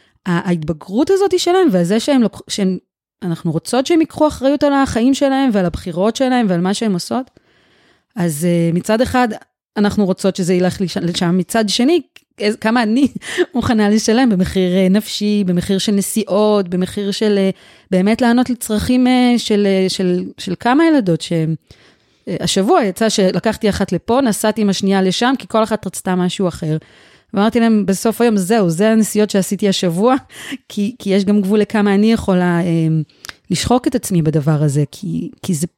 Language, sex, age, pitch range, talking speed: Hebrew, female, 30-49, 180-235 Hz, 170 wpm